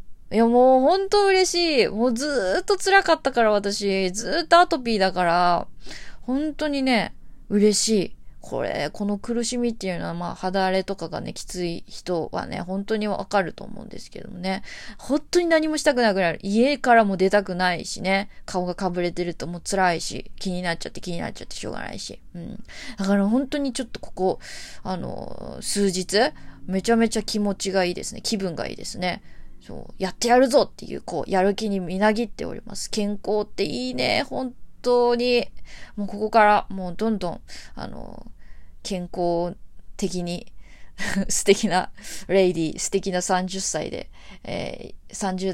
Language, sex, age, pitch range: Japanese, female, 20-39, 180-235 Hz